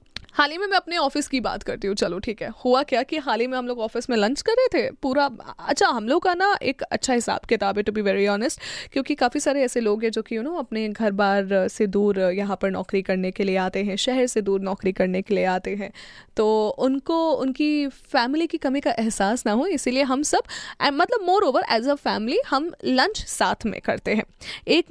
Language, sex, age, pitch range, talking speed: Hindi, female, 10-29, 215-290 Hz, 245 wpm